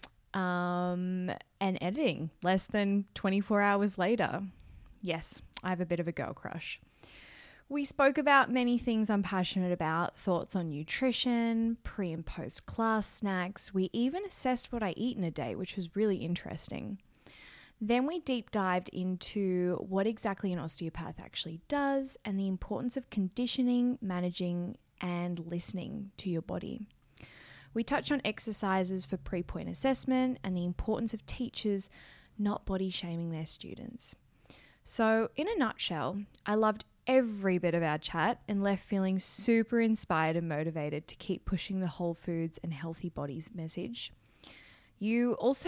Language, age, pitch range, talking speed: English, 20-39, 180-230 Hz, 150 wpm